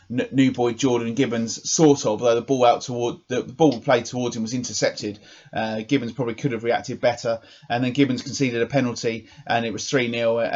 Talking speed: 205 wpm